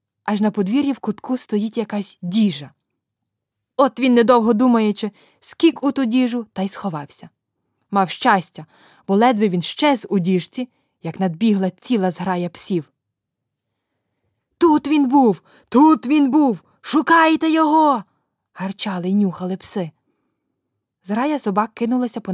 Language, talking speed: German, 130 wpm